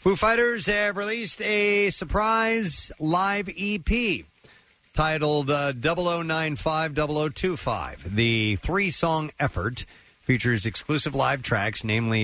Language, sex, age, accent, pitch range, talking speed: English, male, 50-69, American, 95-150 Hz, 95 wpm